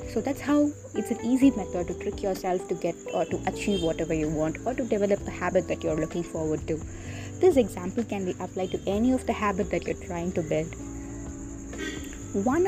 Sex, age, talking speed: female, 20-39, 210 wpm